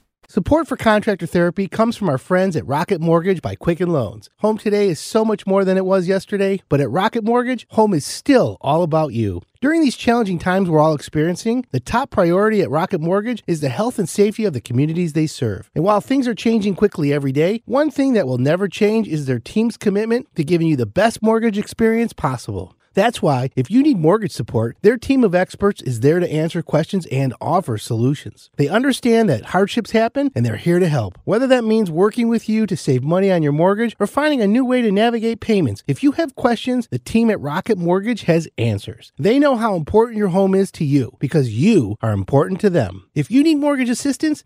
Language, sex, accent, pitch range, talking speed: English, male, American, 150-230 Hz, 220 wpm